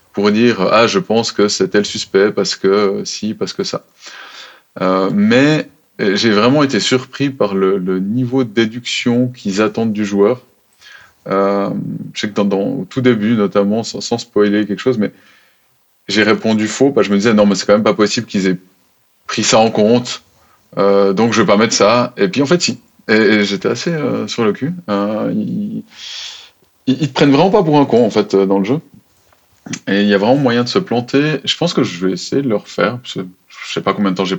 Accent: French